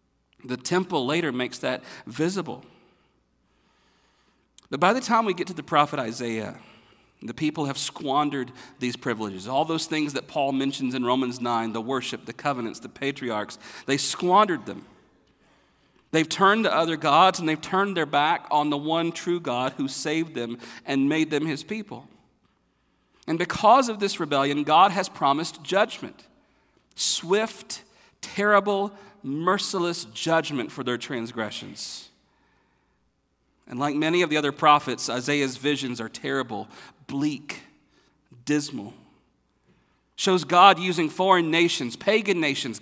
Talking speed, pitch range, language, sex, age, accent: 140 wpm, 130-185 Hz, English, male, 40-59, American